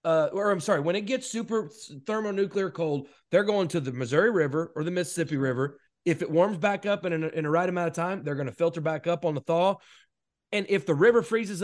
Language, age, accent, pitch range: English, 30-49, American, 155-195 Hz